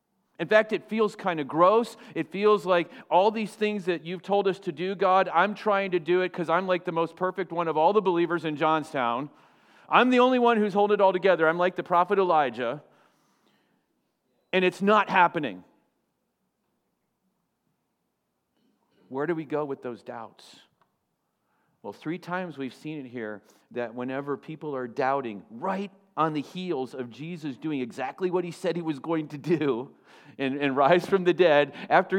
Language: English